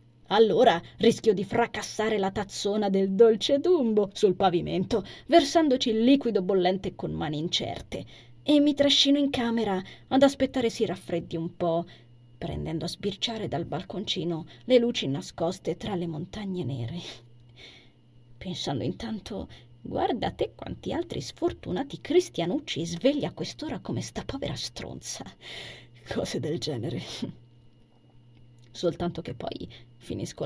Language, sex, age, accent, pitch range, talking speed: Italian, female, 20-39, native, 140-215 Hz, 120 wpm